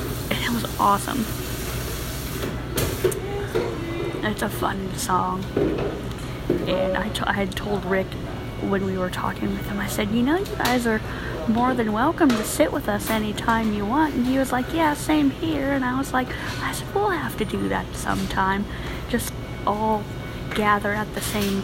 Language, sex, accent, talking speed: English, female, American, 170 wpm